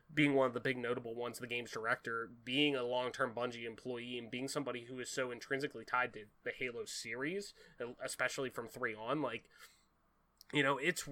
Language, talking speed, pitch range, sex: English, 190 wpm, 125-160 Hz, male